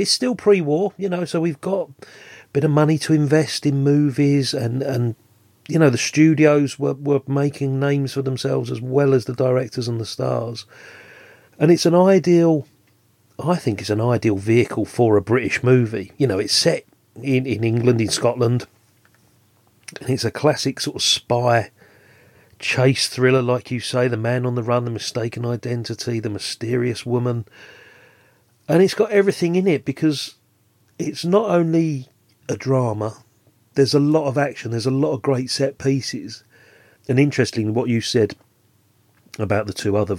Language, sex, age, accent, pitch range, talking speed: English, male, 40-59, British, 110-140 Hz, 170 wpm